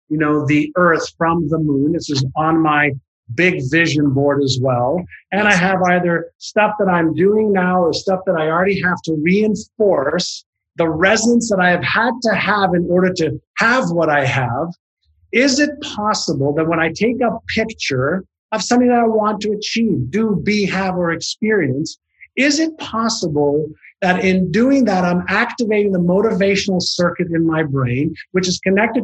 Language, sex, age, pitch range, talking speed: English, male, 50-69, 165-215 Hz, 180 wpm